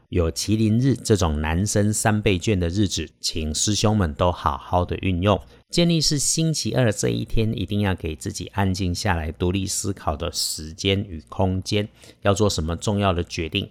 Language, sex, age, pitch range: Chinese, male, 50-69, 90-125 Hz